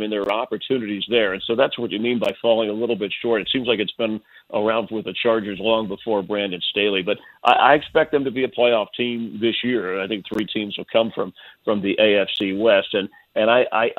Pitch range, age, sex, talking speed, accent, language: 105-125 Hz, 50-69, male, 250 wpm, American, English